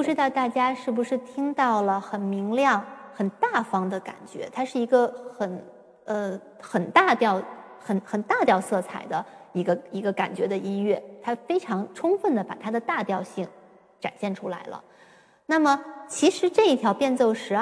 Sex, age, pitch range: female, 20-39, 195-280 Hz